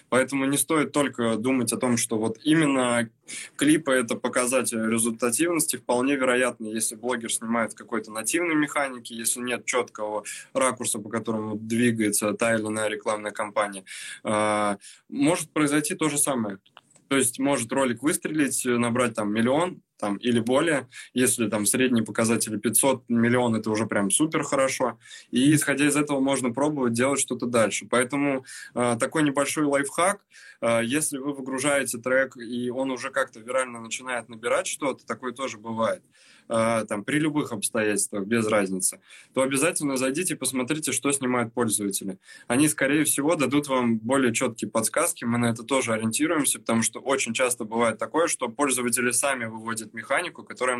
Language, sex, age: Russian, male, 20-39